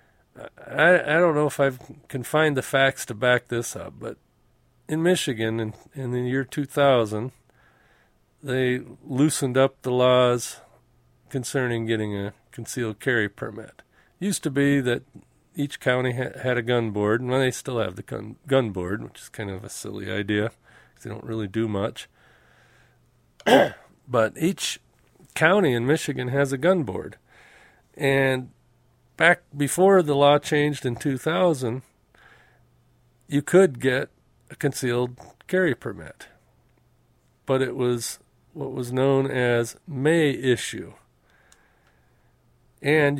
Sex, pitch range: male, 120-145 Hz